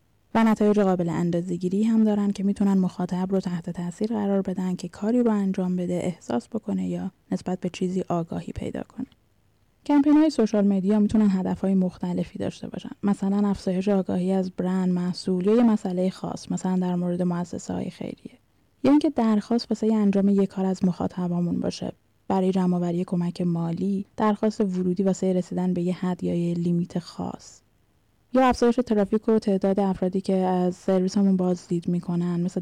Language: Persian